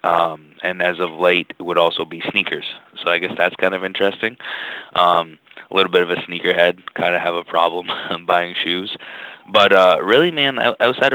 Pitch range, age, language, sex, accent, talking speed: 85-95 Hz, 20-39, English, male, American, 200 wpm